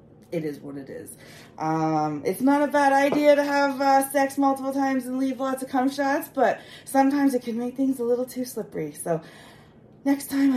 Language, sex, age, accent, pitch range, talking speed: English, female, 30-49, American, 170-285 Hz, 205 wpm